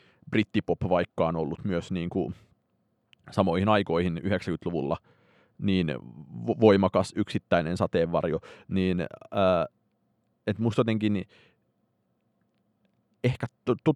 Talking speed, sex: 85 wpm, male